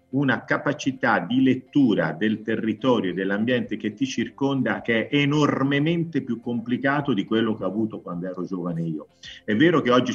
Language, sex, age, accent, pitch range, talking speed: Italian, male, 50-69, native, 100-115 Hz, 170 wpm